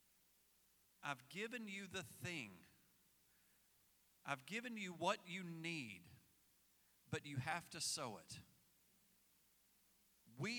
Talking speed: 100 wpm